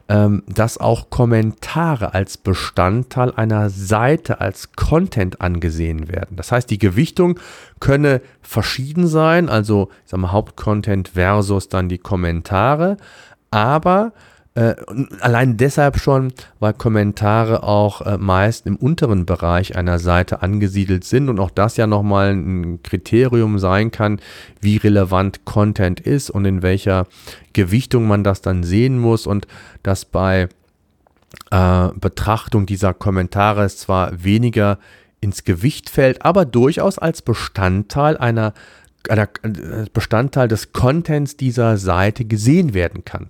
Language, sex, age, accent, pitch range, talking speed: German, male, 40-59, German, 95-125 Hz, 120 wpm